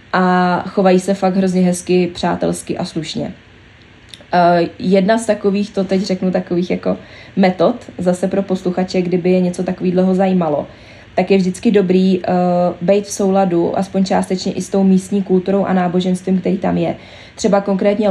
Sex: female